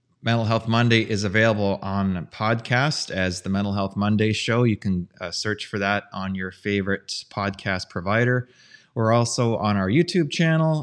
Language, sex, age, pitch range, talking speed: English, male, 30-49, 100-125 Hz, 165 wpm